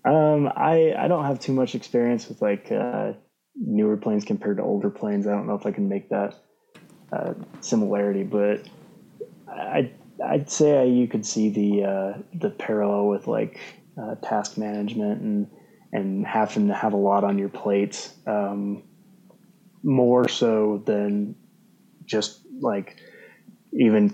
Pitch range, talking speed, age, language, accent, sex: 100-125 Hz, 150 wpm, 20-39, English, American, male